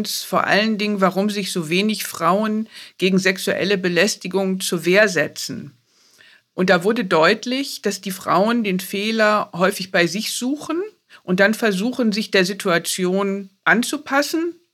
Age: 50-69